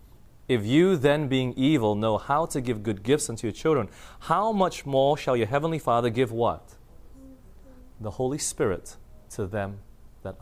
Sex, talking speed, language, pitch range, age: male, 165 wpm, English, 100-120 Hz, 30-49